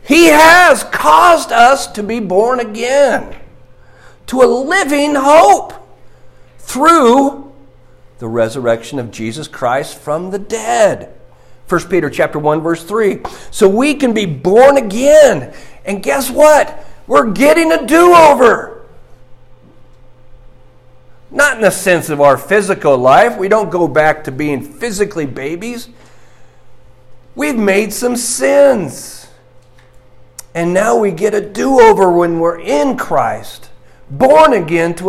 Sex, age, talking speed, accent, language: male, 50-69, 125 wpm, American, English